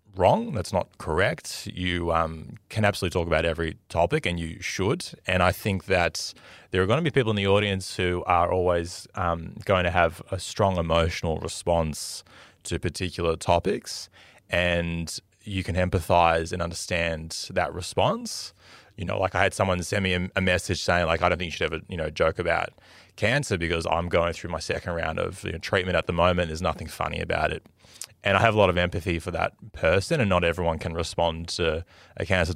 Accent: Australian